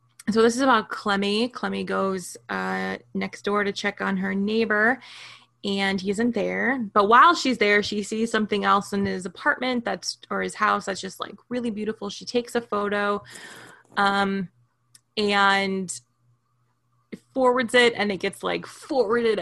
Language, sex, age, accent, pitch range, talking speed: English, female, 20-39, American, 190-230 Hz, 160 wpm